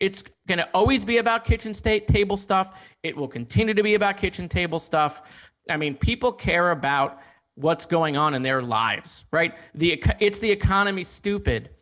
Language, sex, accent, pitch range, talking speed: English, male, American, 150-200 Hz, 180 wpm